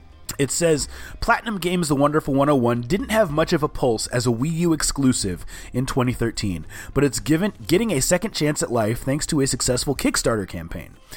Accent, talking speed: American, 190 wpm